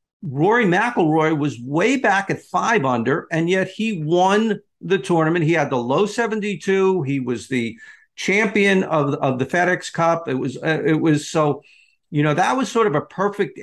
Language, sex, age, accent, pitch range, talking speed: English, male, 50-69, American, 160-205 Hz, 185 wpm